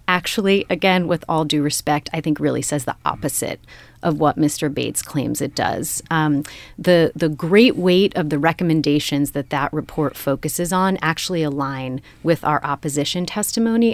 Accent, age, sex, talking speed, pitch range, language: American, 30-49, female, 165 wpm, 150-180 Hz, English